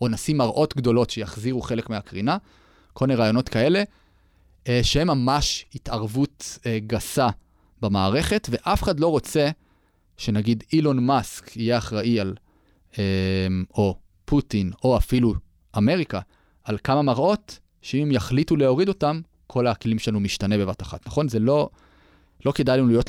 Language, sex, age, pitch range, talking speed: Hebrew, male, 30-49, 100-135 Hz, 135 wpm